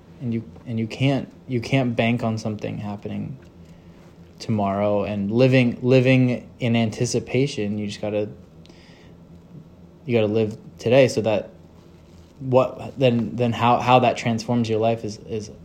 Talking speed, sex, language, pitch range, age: 150 wpm, male, English, 100-120 Hz, 20-39